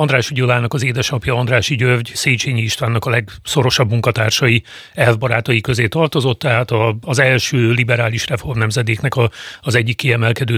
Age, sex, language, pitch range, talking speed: 40-59, male, Hungarian, 120-140 Hz, 130 wpm